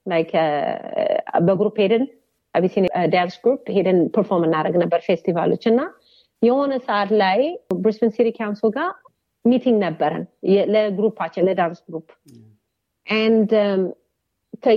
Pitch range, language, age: 185-245 Hz, Amharic, 40-59